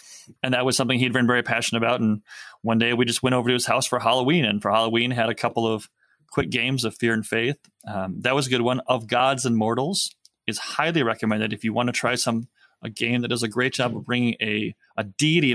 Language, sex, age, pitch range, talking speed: English, male, 20-39, 110-130 Hz, 250 wpm